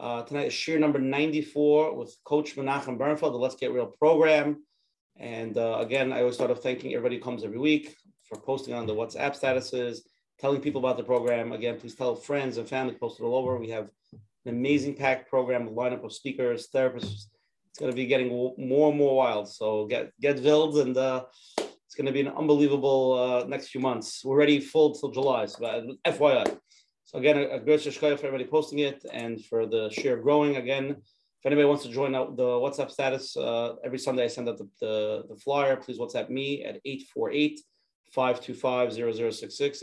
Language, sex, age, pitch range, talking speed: English, male, 30-49, 120-145 Hz, 195 wpm